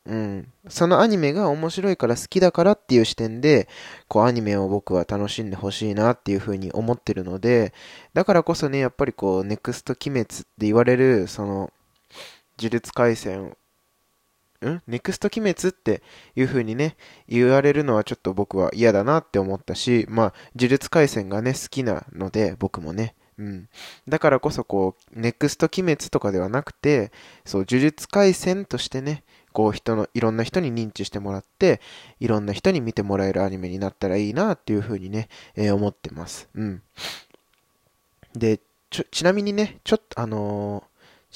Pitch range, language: 100-135 Hz, Japanese